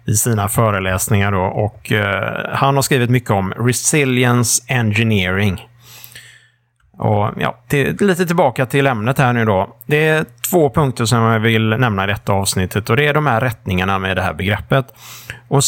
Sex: male